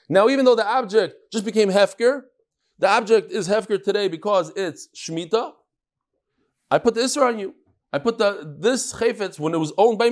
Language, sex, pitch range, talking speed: English, male, 155-235 Hz, 190 wpm